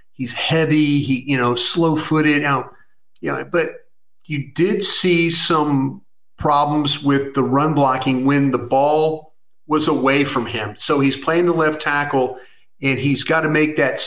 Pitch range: 135-160 Hz